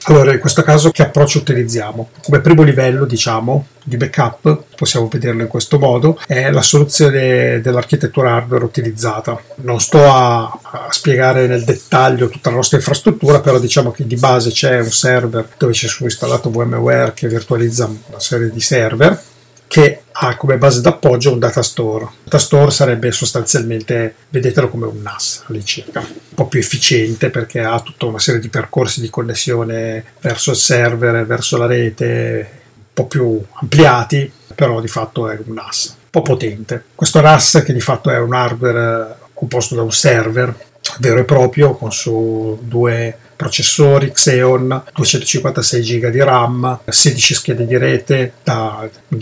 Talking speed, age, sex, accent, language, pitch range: 165 wpm, 30-49, male, native, Italian, 115-145 Hz